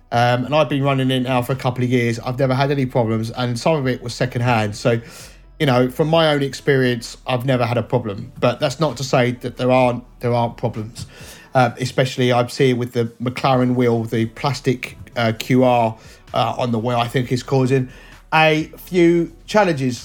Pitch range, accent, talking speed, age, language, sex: 130-215 Hz, British, 205 wpm, 30-49, English, male